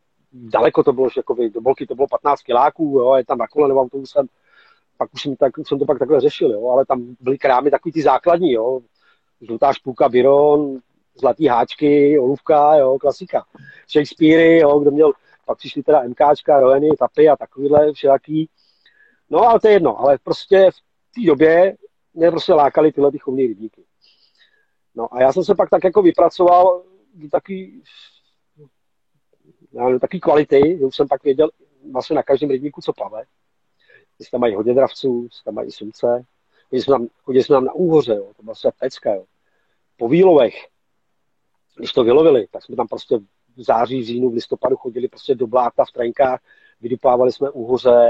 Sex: male